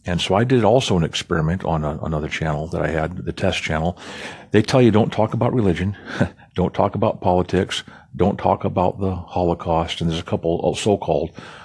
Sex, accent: male, American